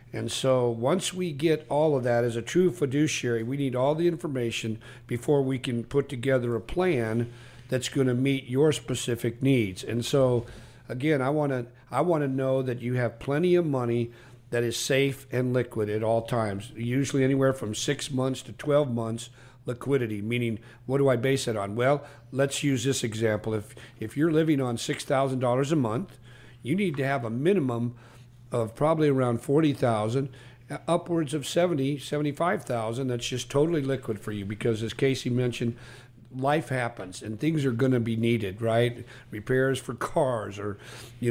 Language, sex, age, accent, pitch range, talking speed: English, male, 50-69, American, 120-140 Hz, 180 wpm